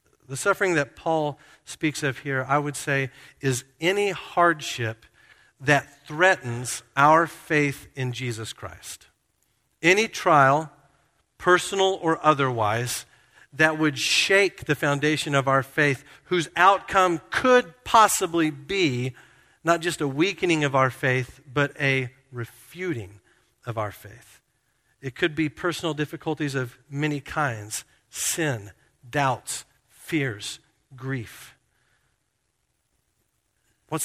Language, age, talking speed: English, 50-69, 115 wpm